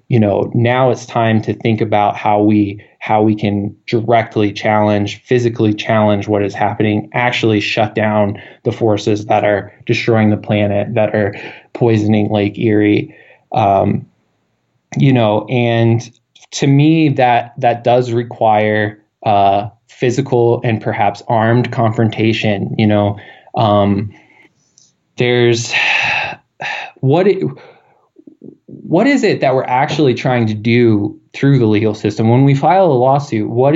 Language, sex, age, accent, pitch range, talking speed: English, male, 20-39, American, 105-130 Hz, 135 wpm